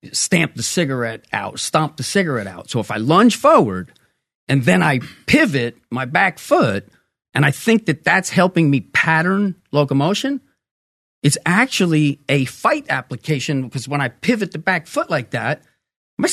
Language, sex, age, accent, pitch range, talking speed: English, male, 40-59, American, 140-200 Hz, 160 wpm